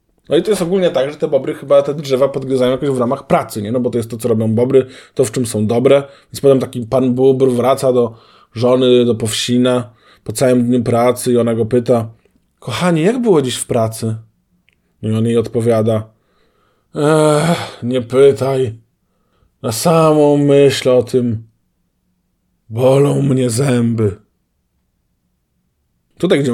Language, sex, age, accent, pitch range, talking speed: Polish, male, 20-39, native, 115-140 Hz, 165 wpm